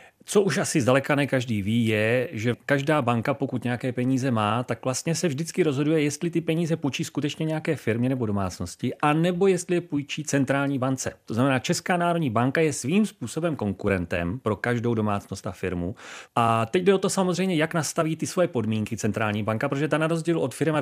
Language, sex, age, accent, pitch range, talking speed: Czech, male, 30-49, native, 110-155 Hz, 200 wpm